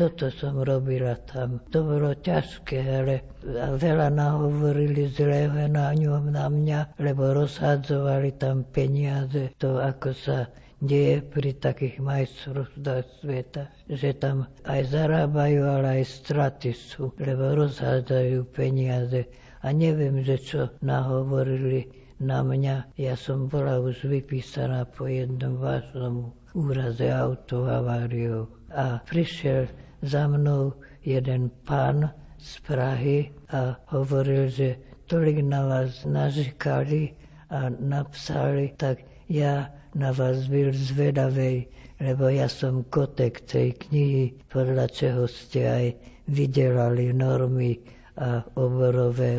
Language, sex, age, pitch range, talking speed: Slovak, female, 60-79, 125-145 Hz, 115 wpm